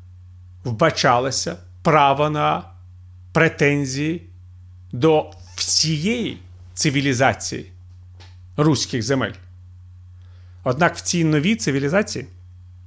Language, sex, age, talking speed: Ukrainian, male, 40-59, 65 wpm